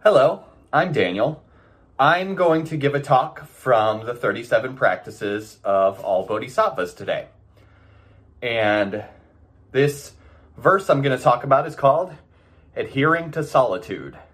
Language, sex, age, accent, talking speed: English, male, 30-49, American, 125 wpm